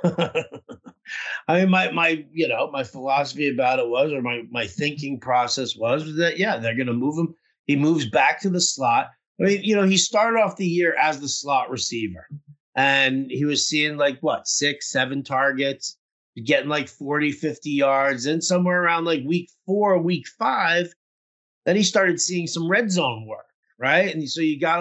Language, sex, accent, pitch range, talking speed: English, male, American, 130-165 Hz, 190 wpm